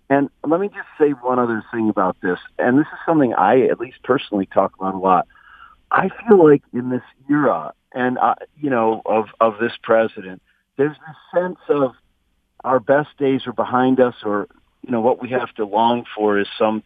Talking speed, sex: 205 wpm, male